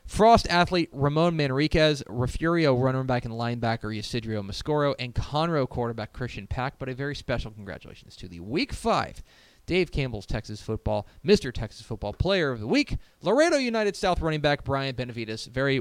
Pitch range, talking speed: 110-160 Hz, 165 wpm